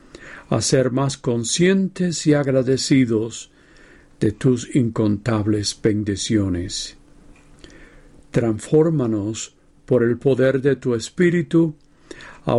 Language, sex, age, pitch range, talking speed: Spanish, male, 50-69, 115-150 Hz, 85 wpm